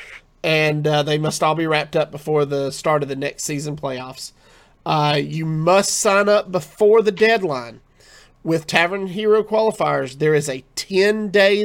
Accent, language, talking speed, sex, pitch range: American, English, 165 wpm, male, 145-185 Hz